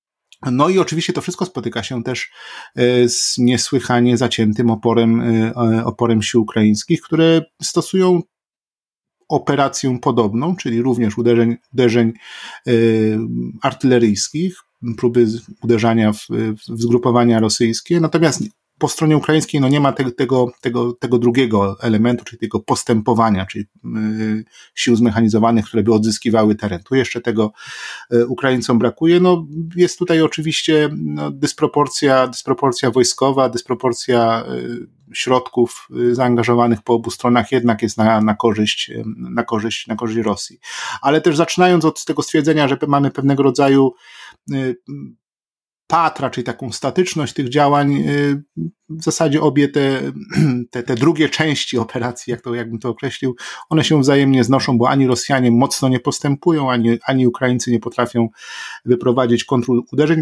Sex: male